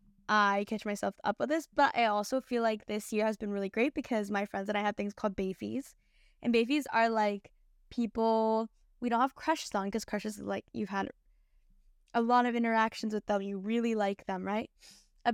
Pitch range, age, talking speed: 205-250 Hz, 10-29, 205 wpm